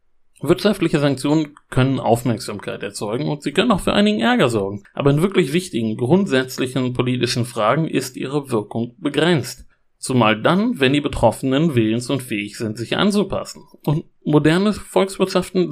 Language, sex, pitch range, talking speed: German, male, 115-155 Hz, 145 wpm